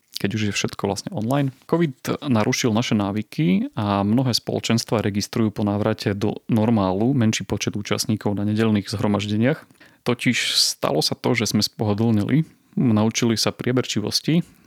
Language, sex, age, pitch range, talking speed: Slovak, male, 30-49, 100-120 Hz, 140 wpm